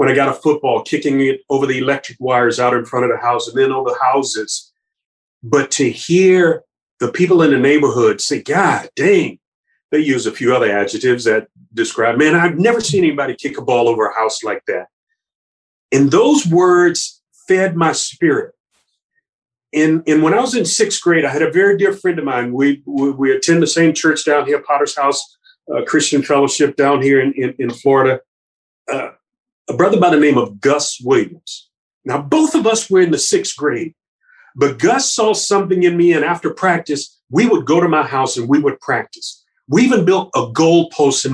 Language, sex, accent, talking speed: English, male, American, 200 wpm